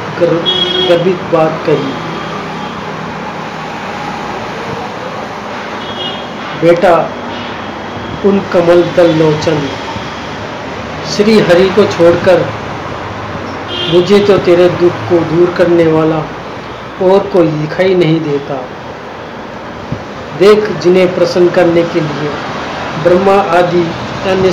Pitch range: 160-180 Hz